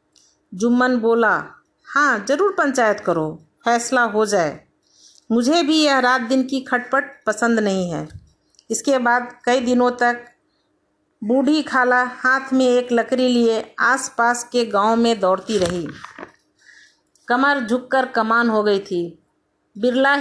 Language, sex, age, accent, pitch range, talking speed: Hindi, female, 50-69, native, 220-265 Hz, 130 wpm